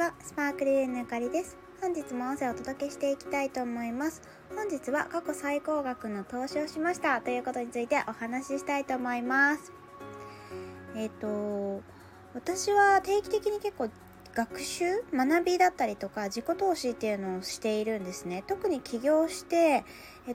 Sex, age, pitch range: female, 20-39, 220-320 Hz